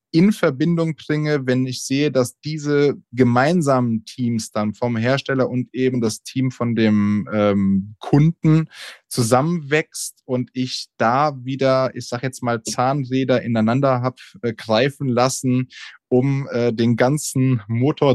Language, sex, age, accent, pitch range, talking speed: German, male, 20-39, German, 115-130 Hz, 130 wpm